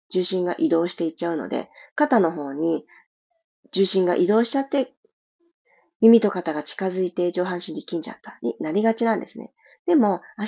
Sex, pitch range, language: female, 175-255 Hz, Japanese